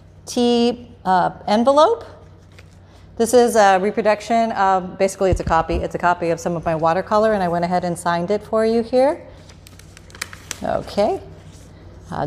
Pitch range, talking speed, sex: 170-205 Hz, 155 wpm, female